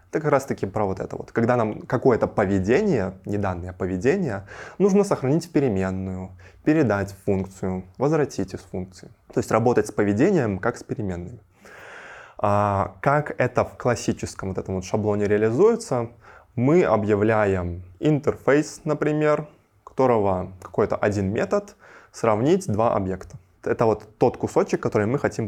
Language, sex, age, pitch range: Russian, male, 20-39, 95-140 Hz